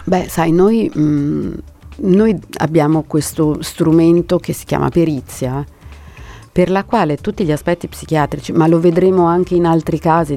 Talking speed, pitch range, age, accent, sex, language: 145 wpm, 145-175 Hz, 40-59, native, female, Italian